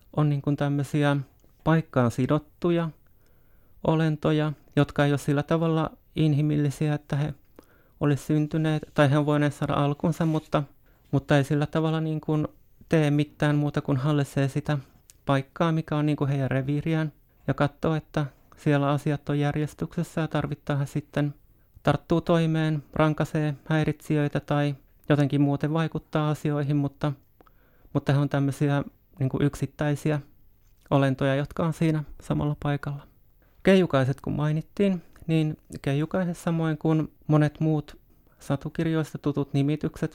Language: Finnish